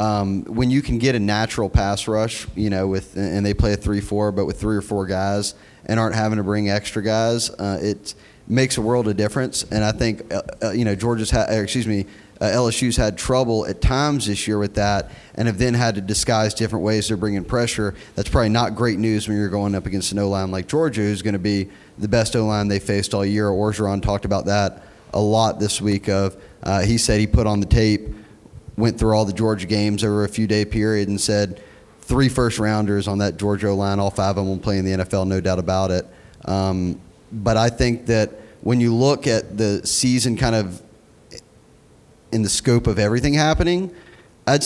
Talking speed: 220 wpm